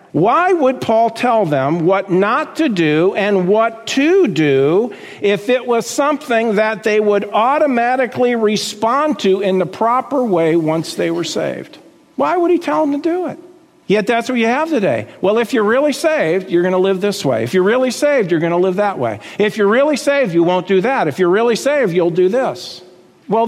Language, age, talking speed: English, 50-69, 210 wpm